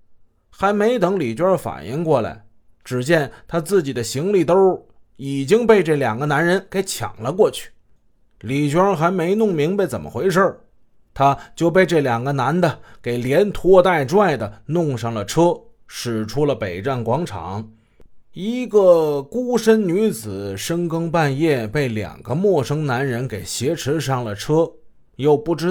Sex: male